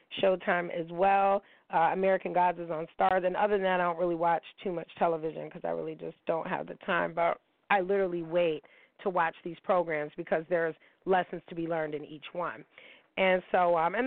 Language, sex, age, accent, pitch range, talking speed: English, female, 30-49, American, 165-195 Hz, 210 wpm